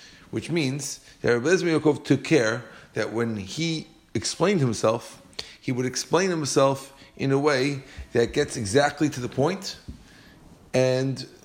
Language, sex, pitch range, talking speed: English, male, 105-140 Hz, 135 wpm